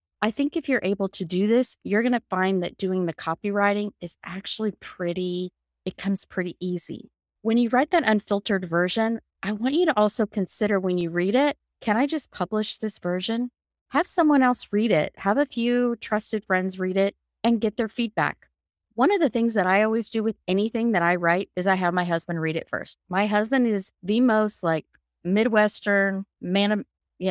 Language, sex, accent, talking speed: English, female, American, 200 wpm